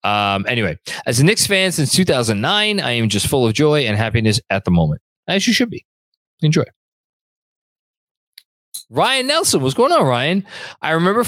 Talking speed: 170 wpm